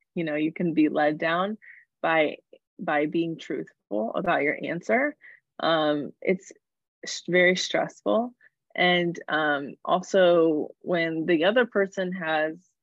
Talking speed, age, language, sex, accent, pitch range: 120 wpm, 20-39, English, female, American, 155-185 Hz